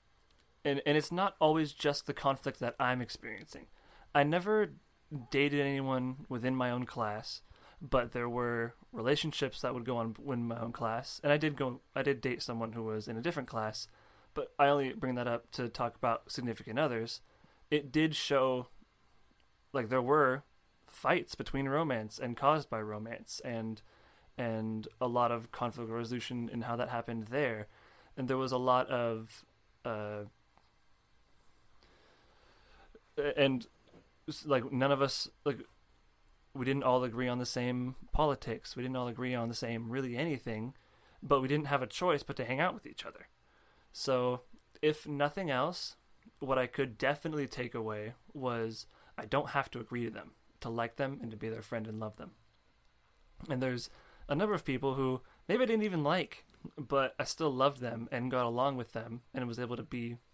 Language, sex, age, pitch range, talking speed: English, male, 20-39, 115-140 Hz, 180 wpm